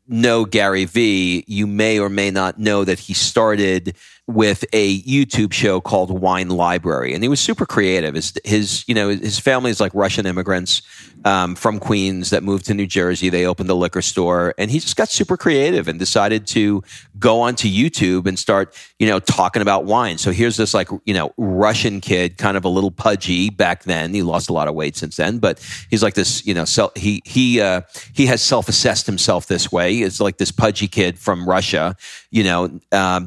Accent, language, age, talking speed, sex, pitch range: American, English, 40-59, 210 wpm, male, 90-110 Hz